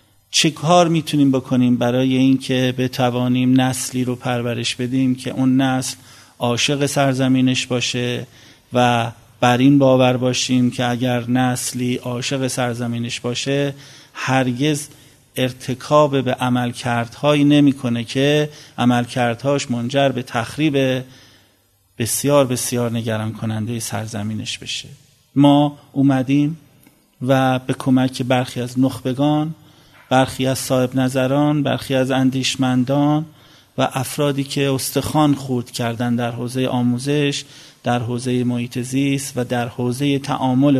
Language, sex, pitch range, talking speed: Persian, male, 120-140 Hz, 110 wpm